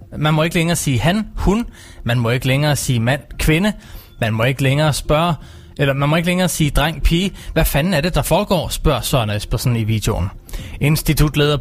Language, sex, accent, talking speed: Danish, male, native, 205 wpm